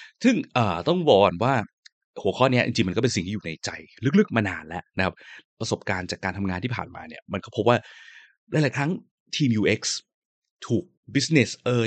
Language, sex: Thai, male